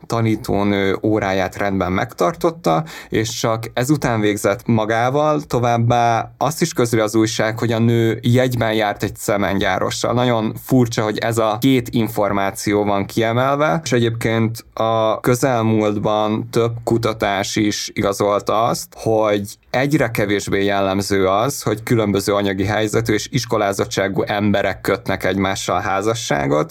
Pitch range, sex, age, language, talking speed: 100-120 Hz, male, 20-39, Hungarian, 125 wpm